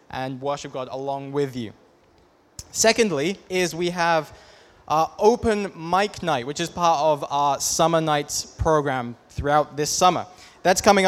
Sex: male